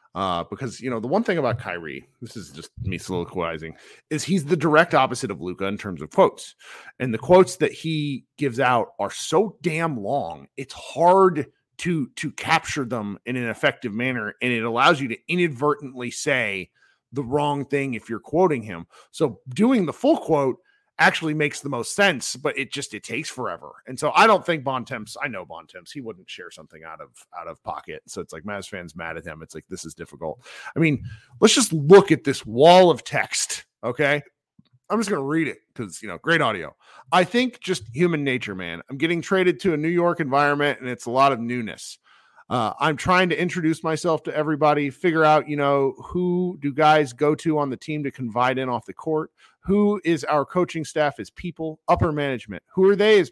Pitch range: 125-175 Hz